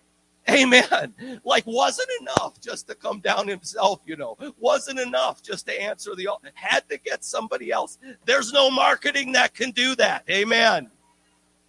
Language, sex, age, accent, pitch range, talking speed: English, male, 50-69, American, 150-245 Hz, 160 wpm